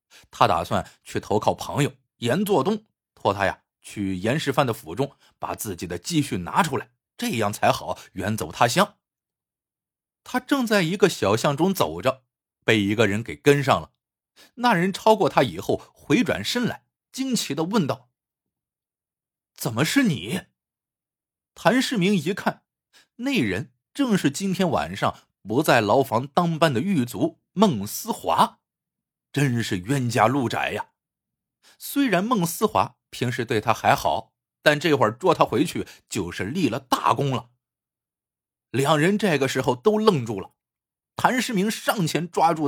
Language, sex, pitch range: Chinese, male, 120-205 Hz